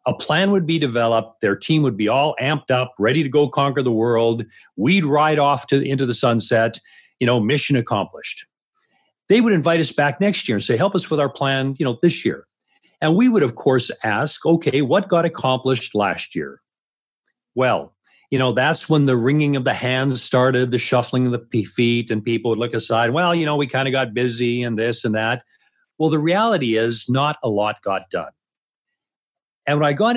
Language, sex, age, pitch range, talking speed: English, male, 40-59, 120-170 Hz, 210 wpm